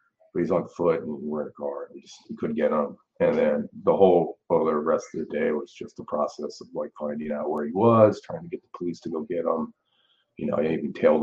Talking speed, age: 260 wpm, 30-49